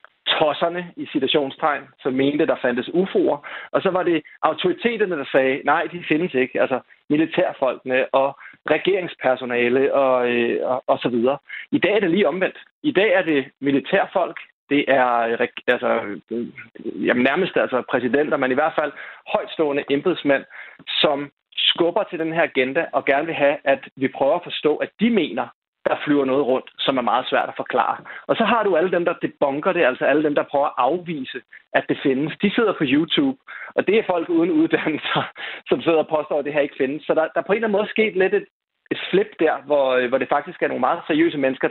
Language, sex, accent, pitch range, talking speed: Danish, male, native, 135-190 Hz, 205 wpm